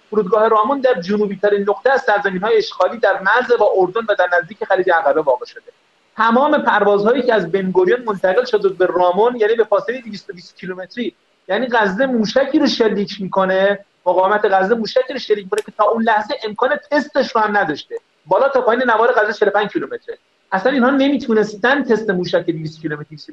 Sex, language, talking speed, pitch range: male, Persian, 180 wpm, 195-265 Hz